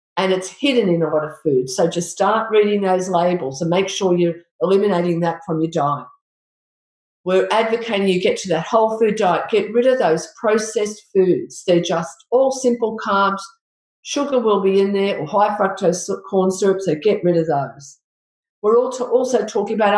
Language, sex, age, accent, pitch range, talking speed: English, female, 50-69, Australian, 170-220 Hz, 190 wpm